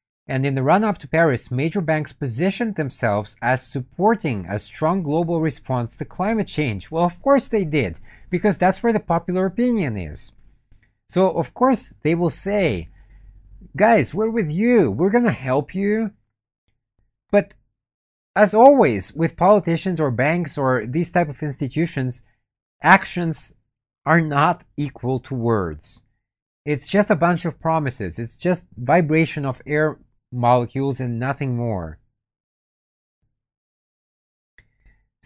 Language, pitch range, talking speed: English, 115-165 Hz, 135 wpm